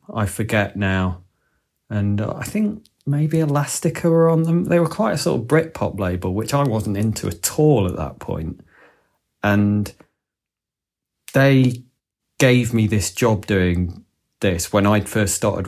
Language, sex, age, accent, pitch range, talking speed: English, male, 30-49, British, 100-115 Hz, 155 wpm